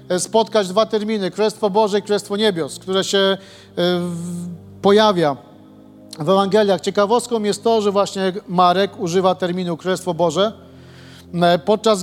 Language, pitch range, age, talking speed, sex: Polish, 180-210 Hz, 40-59, 120 wpm, male